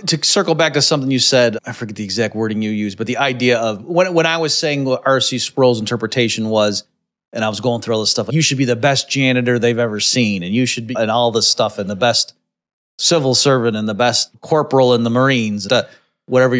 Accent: American